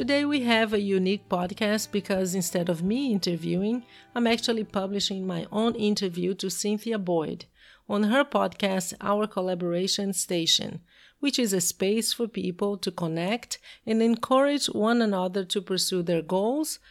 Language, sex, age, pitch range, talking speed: English, female, 40-59, 180-230 Hz, 150 wpm